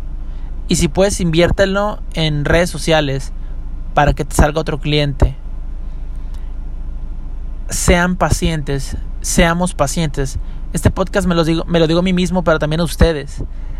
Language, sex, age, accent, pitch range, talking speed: Spanish, male, 20-39, Mexican, 135-170 Hz, 140 wpm